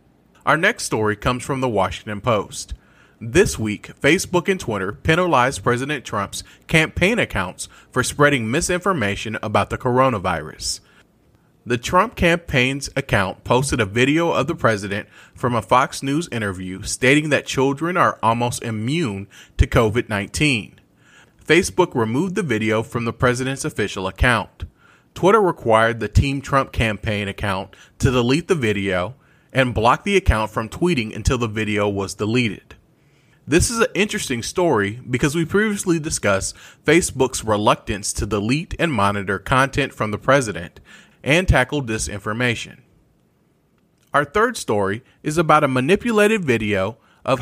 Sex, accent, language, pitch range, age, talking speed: male, American, English, 105-145 Hz, 30-49, 140 wpm